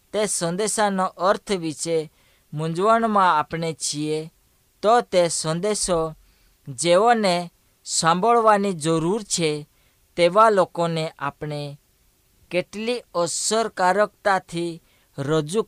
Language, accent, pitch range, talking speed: Hindi, native, 150-195 Hz, 90 wpm